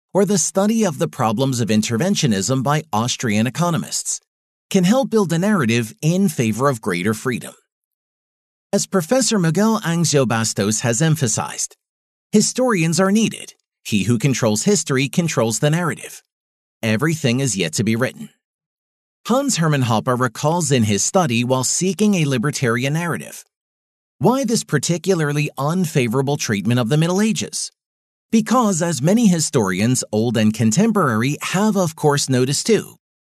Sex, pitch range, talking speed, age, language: male, 115-185 Hz, 140 wpm, 40-59, English